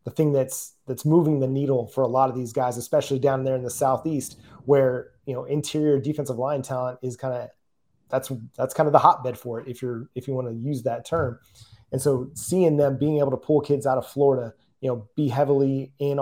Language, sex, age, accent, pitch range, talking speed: English, male, 30-49, American, 130-150 Hz, 235 wpm